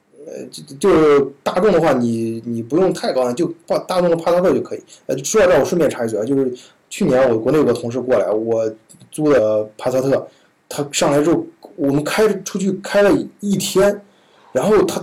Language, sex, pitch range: Chinese, male, 130-195 Hz